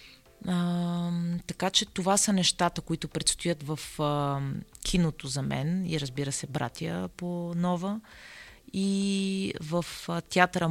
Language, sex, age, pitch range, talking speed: Bulgarian, female, 30-49, 145-180 Hz, 130 wpm